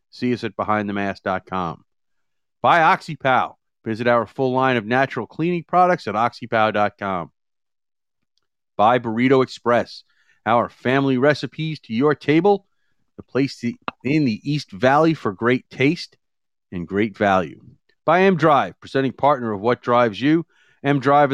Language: English